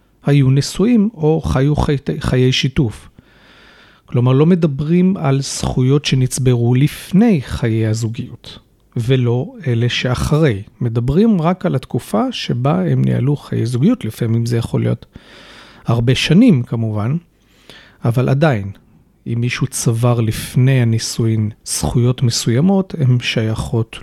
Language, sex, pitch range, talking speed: Hebrew, male, 120-155 Hz, 115 wpm